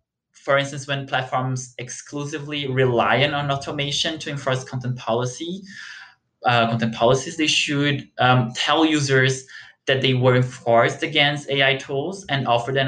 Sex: male